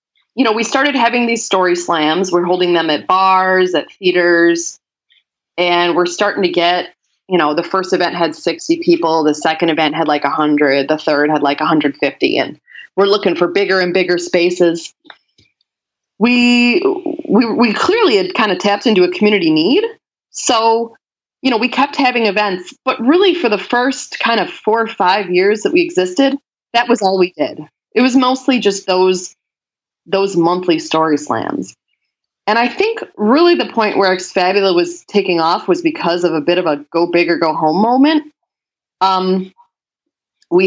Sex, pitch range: female, 175-240 Hz